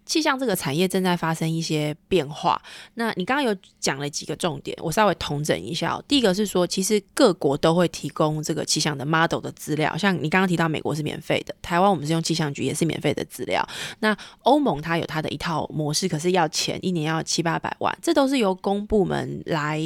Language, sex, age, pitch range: Chinese, female, 20-39, 160-195 Hz